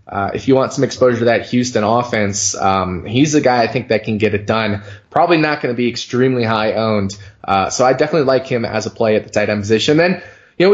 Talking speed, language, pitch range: 255 wpm, English, 110-130 Hz